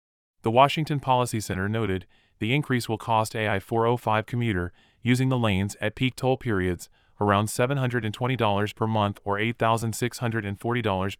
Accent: American